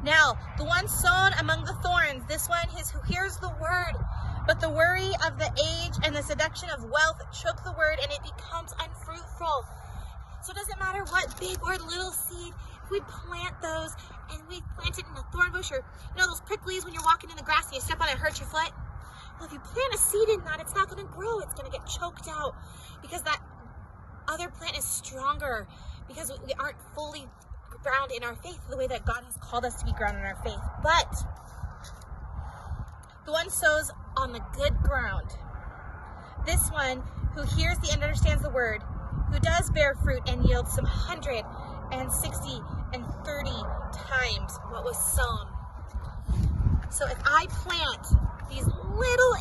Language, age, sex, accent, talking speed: English, 20-39, female, American, 195 wpm